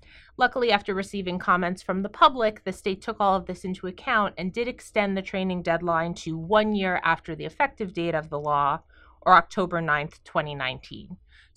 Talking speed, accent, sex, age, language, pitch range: 180 wpm, American, female, 30-49, English, 165-210 Hz